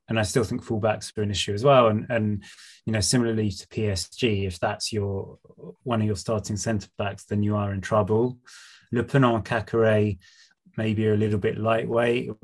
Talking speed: 200 wpm